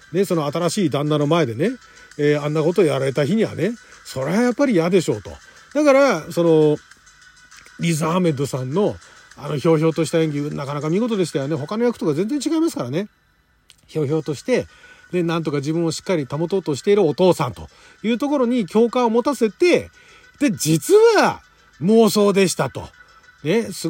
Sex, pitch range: male, 160-270 Hz